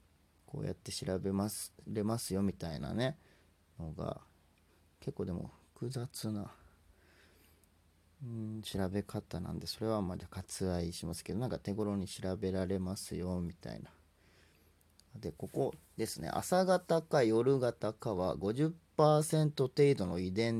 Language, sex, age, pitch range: Japanese, male, 40-59, 85-135 Hz